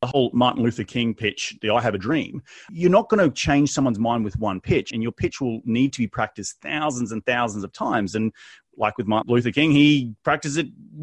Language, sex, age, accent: English, male, 30-49, Australian